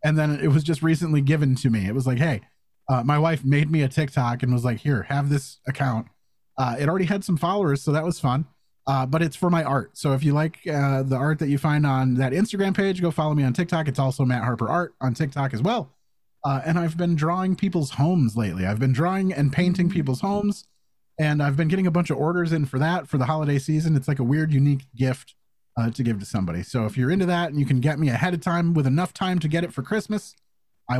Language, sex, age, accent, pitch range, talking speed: English, male, 30-49, American, 130-170 Hz, 260 wpm